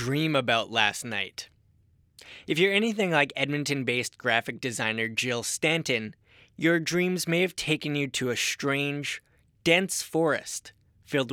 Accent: American